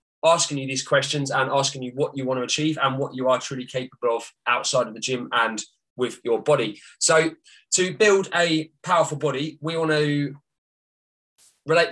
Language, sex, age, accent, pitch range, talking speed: English, male, 20-39, British, 130-155 Hz, 185 wpm